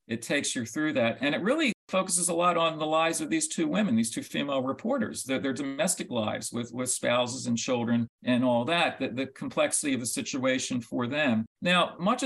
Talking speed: 215 wpm